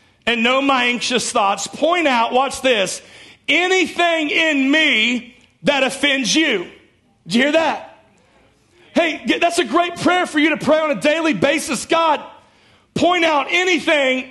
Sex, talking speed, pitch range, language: male, 150 wpm, 225-285 Hz, English